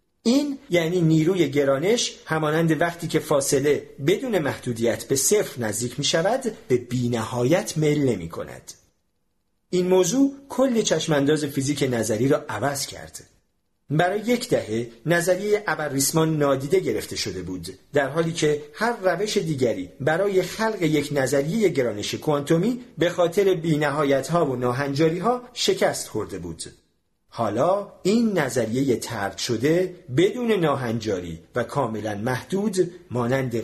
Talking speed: 125 wpm